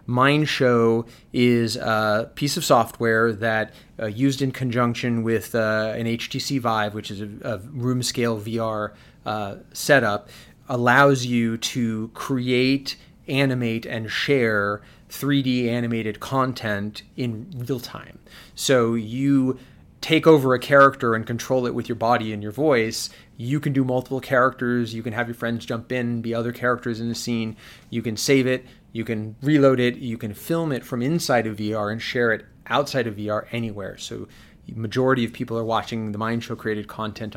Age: 30-49